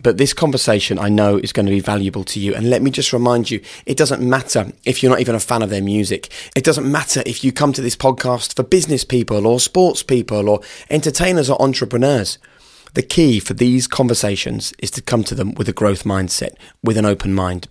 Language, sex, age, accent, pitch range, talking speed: English, male, 20-39, British, 100-125 Hz, 225 wpm